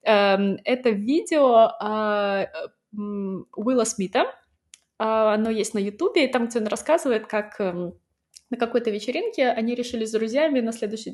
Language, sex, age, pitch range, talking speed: Russian, female, 20-39, 205-255 Hz, 145 wpm